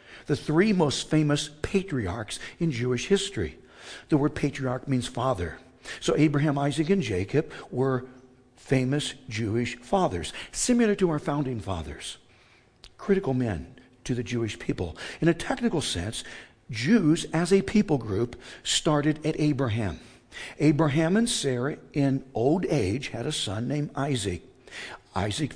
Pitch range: 125-160 Hz